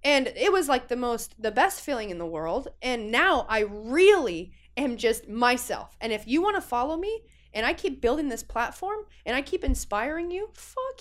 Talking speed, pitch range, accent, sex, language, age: 205 wpm, 200-285 Hz, American, female, English, 20-39